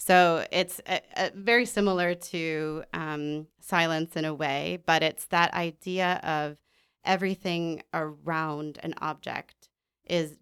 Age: 30-49